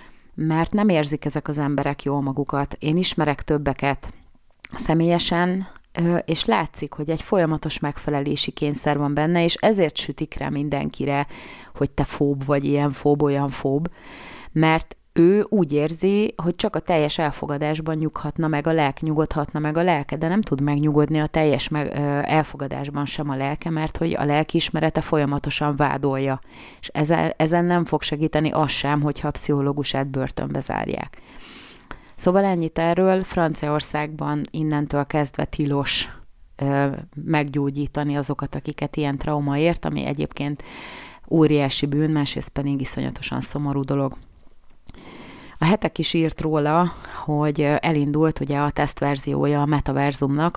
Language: Hungarian